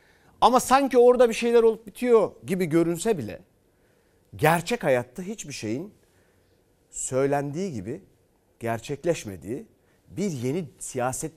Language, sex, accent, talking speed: Turkish, male, native, 105 wpm